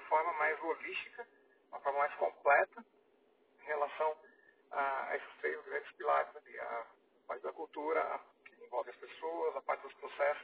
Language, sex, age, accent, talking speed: Portuguese, male, 40-59, Brazilian, 130 wpm